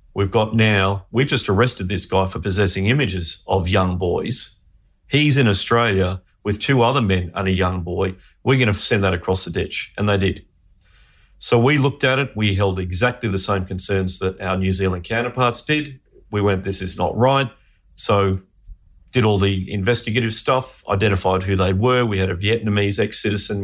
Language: English